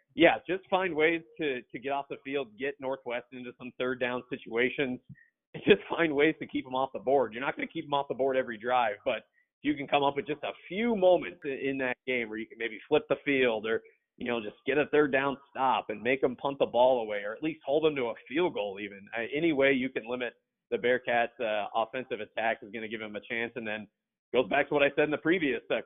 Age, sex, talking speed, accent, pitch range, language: 30-49, male, 265 wpm, American, 125-170 Hz, English